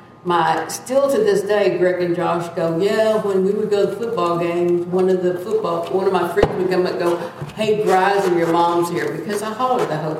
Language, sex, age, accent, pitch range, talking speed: English, female, 50-69, American, 175-225 Hz, 235 wpm